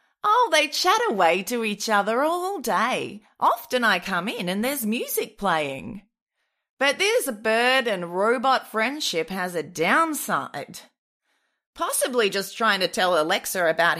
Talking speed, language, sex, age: 145 wpm, English, female, 30-49